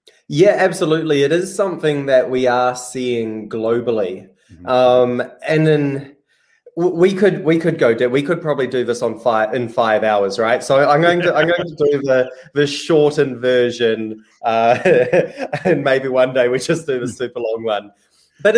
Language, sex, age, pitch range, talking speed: English, male, 20-39, 120-155 Hz, 180 wpm